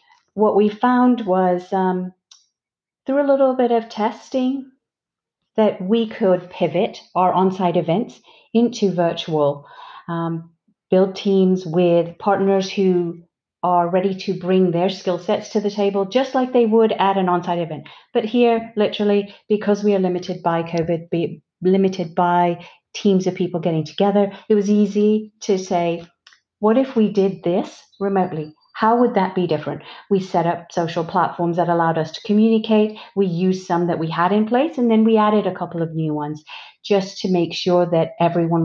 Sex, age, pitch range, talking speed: female, 40-59, 170-210 Hz, 170 wpm